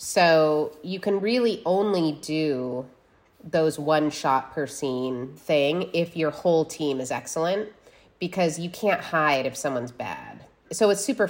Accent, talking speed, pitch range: American, 150 wpm, 145-180 Hz